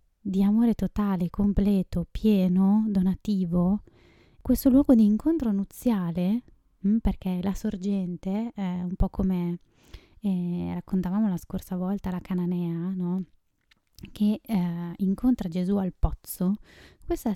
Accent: native